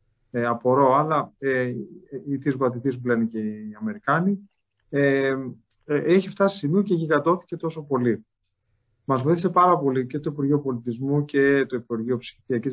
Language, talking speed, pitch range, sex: Greek, 155 wpm, 120-150 Hz, male